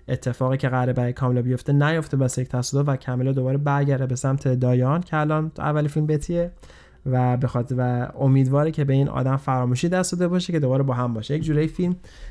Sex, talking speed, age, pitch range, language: male, 215 wpm, 20-39, 125-140 Hz, Persian